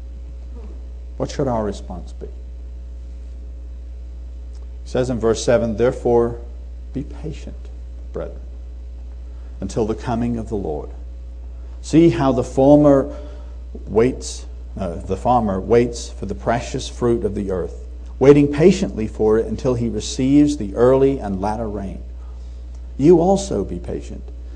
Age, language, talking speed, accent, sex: 60-79, English, 125 wpm, American, male